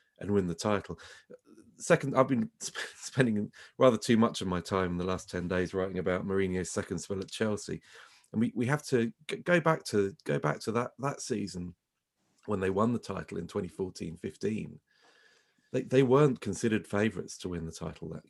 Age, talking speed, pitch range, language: 30-49, 195 wpm, 95-125 Hz, English